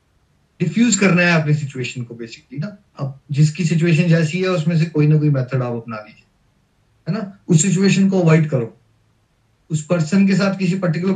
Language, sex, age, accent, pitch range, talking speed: Hindi, male, 30-49, native, 155-195 Hz, 190 wpm